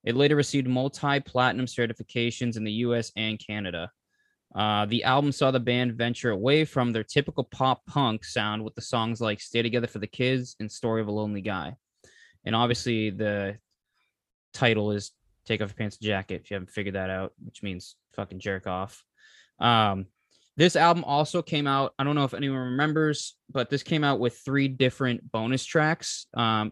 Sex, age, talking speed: male, 20-39, 185 wpm